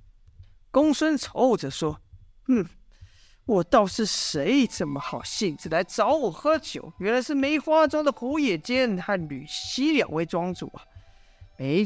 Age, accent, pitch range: 50-69, native, 160-255 Hz